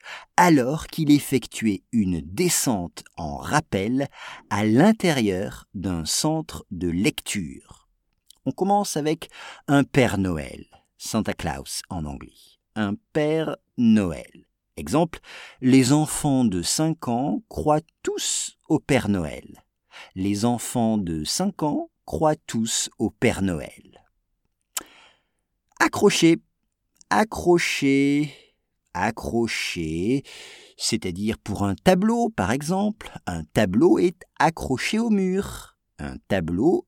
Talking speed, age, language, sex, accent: 105 wpm, 50-69, English, male, French